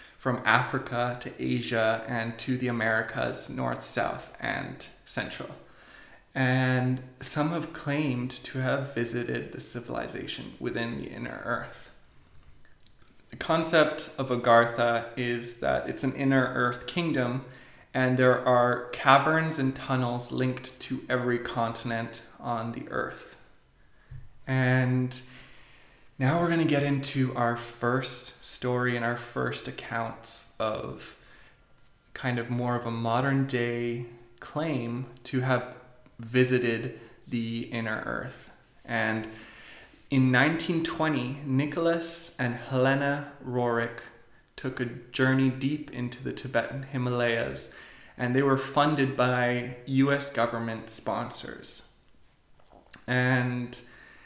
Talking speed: 115 wpm